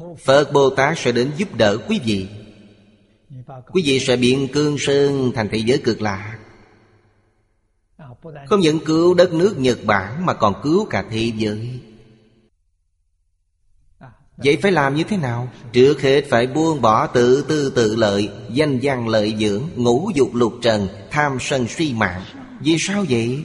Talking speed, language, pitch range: 160 wpm, Vietnamese, 110-150 Hz